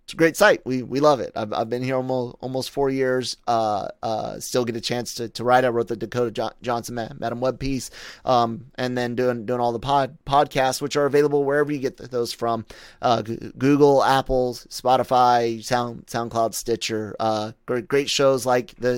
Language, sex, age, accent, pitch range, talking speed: English, male, 30-49, American, 115-145 Hz, 195 wpm